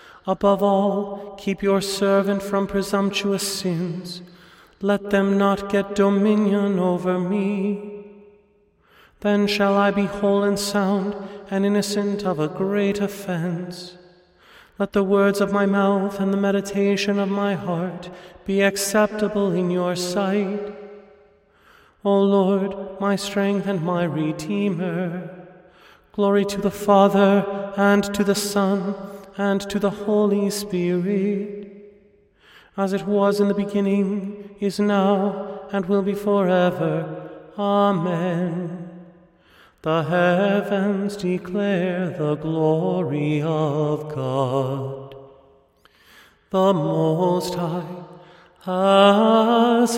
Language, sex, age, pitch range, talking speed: English, male, 30-49, 180-200 Hz, 105 wpm